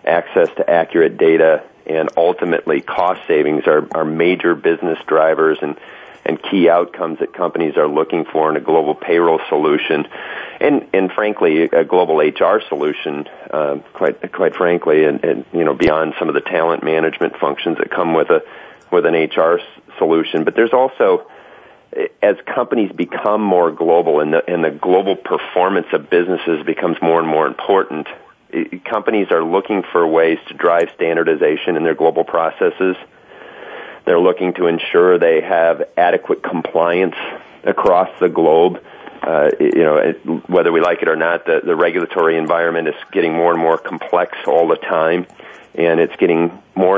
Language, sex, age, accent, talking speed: English, male, 40-59, American, 165 wpm